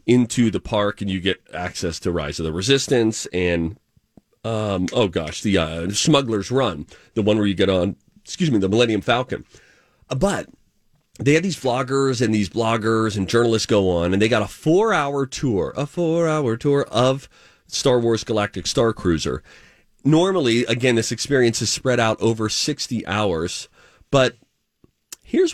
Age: 30-49